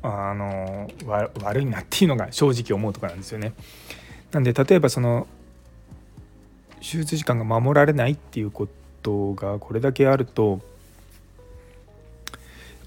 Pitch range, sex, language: 100-130 Hz, male, Japanese